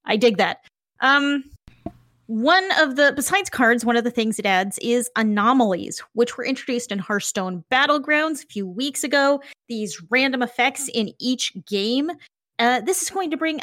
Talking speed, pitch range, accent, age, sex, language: 170 wpm, 215-300 Hz, American, 30-49, female, English